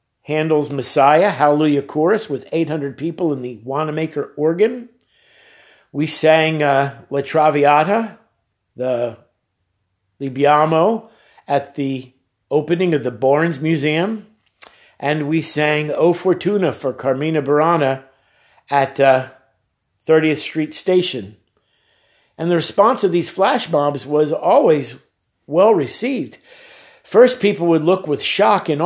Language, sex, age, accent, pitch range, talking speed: English, male, 50-69, American, 135-185 Hz, 115 wpm